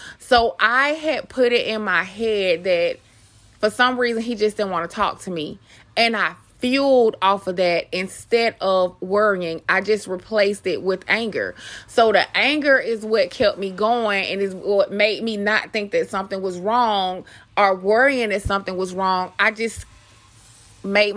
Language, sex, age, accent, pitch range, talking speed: English, female, 20-39, American, 190-230 Hz, 180 wpm